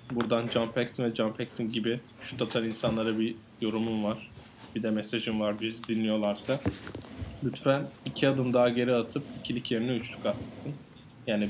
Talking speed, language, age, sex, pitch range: 145 wpm, Turkish, 20-39, male, 115-130 Hz